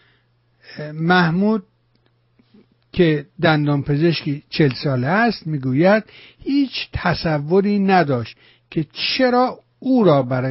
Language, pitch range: Persian, 130-180 Hz